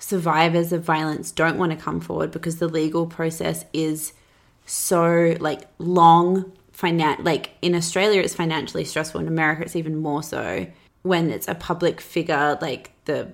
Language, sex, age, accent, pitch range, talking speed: English, female, 20-39, Australian, 150-170 Hz, 160 wpm